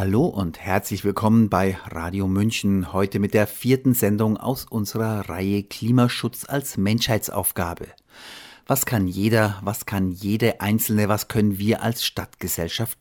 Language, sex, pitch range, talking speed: German, male, 95-115 Hz, 140 wpm